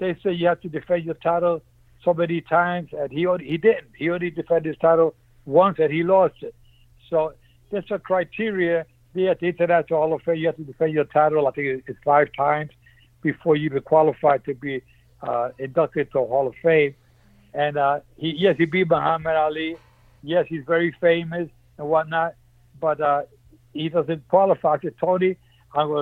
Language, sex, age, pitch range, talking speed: English, male, 60-79, 135-175 Hz, 195 wpm